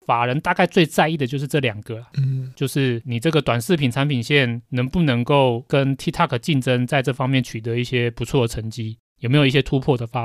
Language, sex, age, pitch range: Chinese, male, 30-49, 125-160 Hz